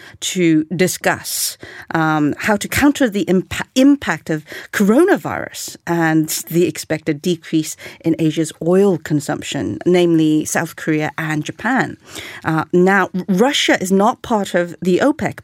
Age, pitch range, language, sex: 40-59, 160-195 Hz, Korean, female